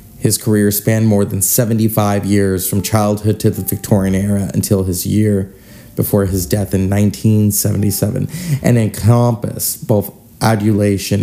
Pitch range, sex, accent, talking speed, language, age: 95-110 Hz, male, American, 135 wpm, English, 30-49